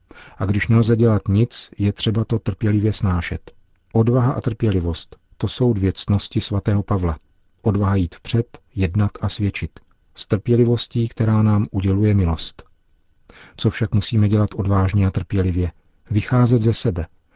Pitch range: 95-110 Hz